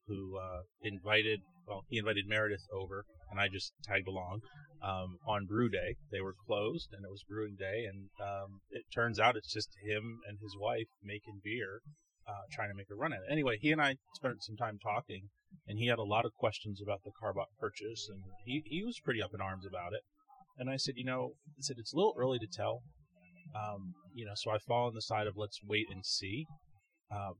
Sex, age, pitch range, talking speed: male, 30-49, 100-125 Hz, 225 wpm